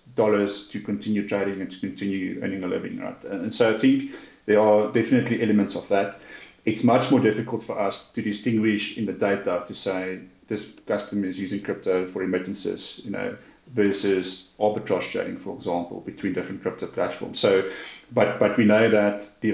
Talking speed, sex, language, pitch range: 180 wpm, male, English, 100-110 Hz